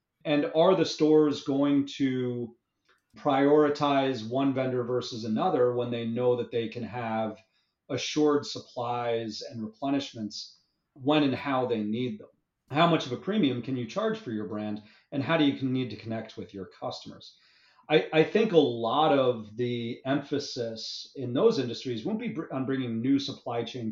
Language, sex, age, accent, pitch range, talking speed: English, male, 40-59, American, 115-140 Hz, 170 wpm